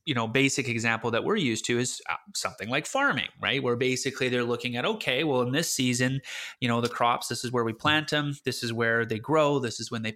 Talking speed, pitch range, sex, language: 250 wpm, 120-150 Hz, male, English